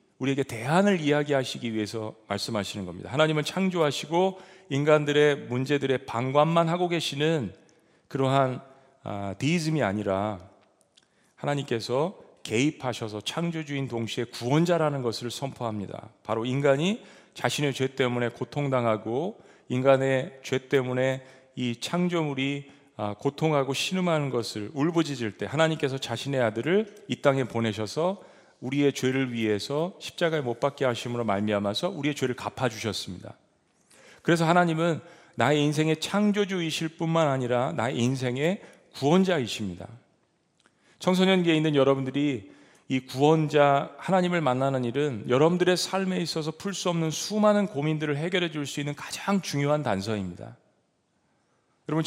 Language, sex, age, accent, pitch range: Korean, male, 40-59, native, 120-160 Hz